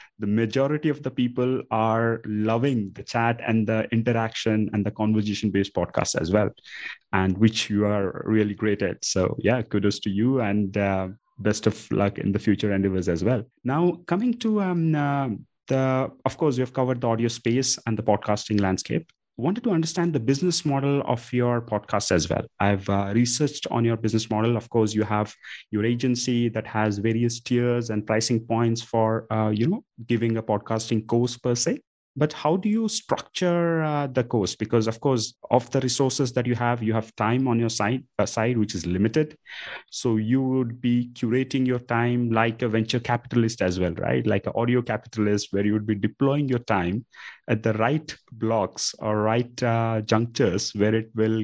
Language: English